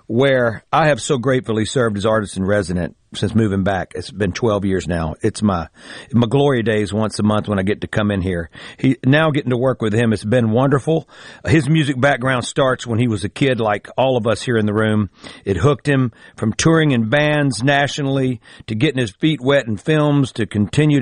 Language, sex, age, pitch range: English, male, 50-69, 110-150 Hz